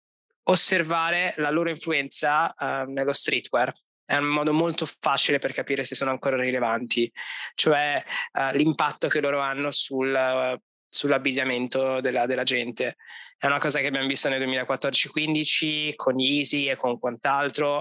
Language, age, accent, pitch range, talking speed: Italian, 20-39, native, 130-160 Hz, 135 wpm